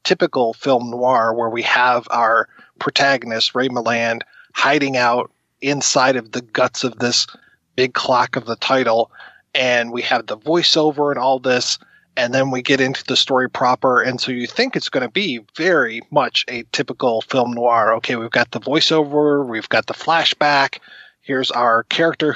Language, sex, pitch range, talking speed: English, male, 120-145 Hz, 175 wpm